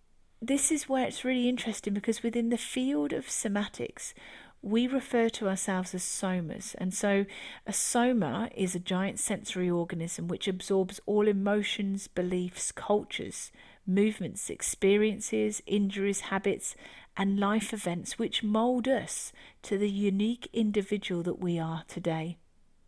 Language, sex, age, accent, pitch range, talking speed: English, female, 40-59, British, 190-240 Hz, 135 wpm